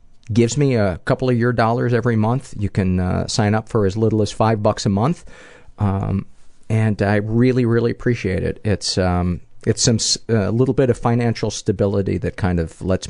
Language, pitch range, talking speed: English, 90-120 Hz, 200 wpm